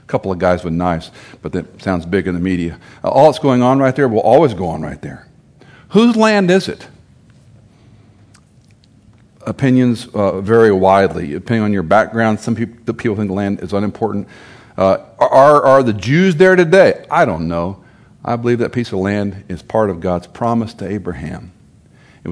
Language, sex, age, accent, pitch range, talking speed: English, male, 50-69, American, 95-120 Hz, 180 wpm